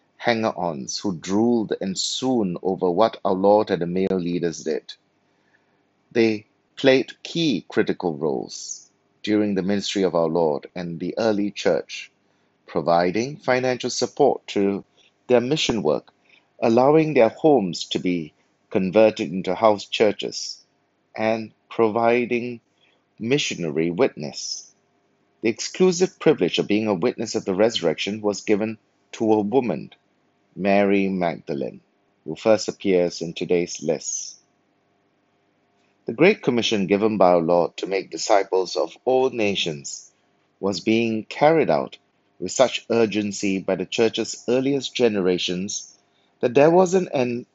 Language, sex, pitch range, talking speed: English, male, 95-115 Hz, 130 wpm